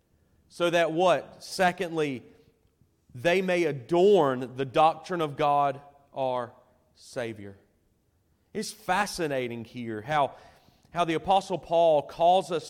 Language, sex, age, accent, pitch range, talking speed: English, male, 30-49, American, 135-170 Hz, 110 wpm